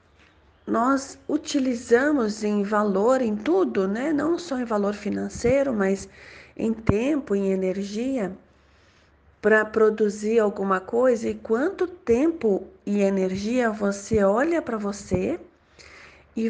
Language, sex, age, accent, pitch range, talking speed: Portuguese, female, 40-59, Brazilian, 195-255 Hz, 115 wpm